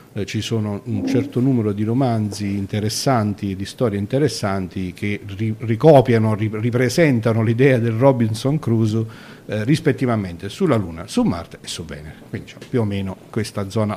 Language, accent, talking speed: Italian, native, 145 wpm